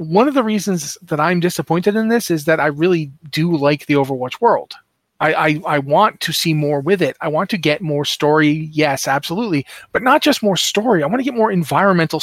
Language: English